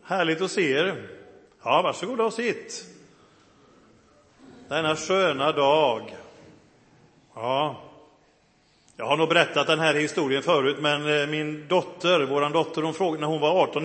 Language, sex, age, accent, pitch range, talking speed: Swedish, male, 40-59, native, 150-185 Hz, 135 wpm